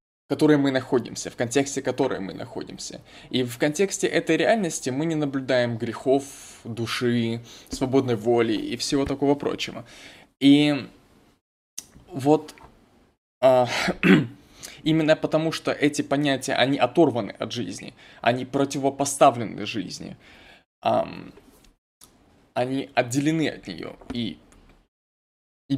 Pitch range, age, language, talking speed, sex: 125-150 Hz, 20-39, Russian, 100 wpm, male